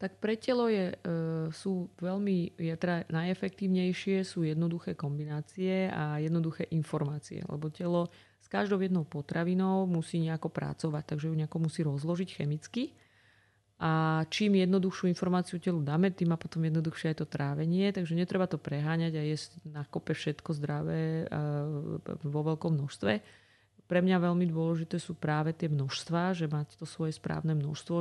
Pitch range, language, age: 150-170 Hz, Slovak, 30-49